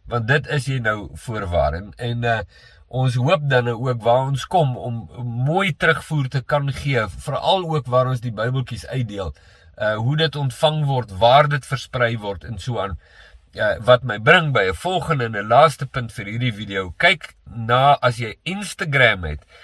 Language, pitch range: English, 115-150 Hz